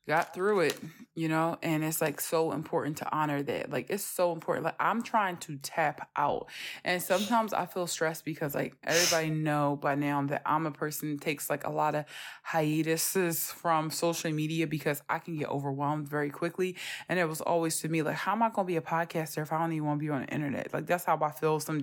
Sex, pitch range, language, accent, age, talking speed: female, 155-180 Hz, English, American, 20-39, 235 wpm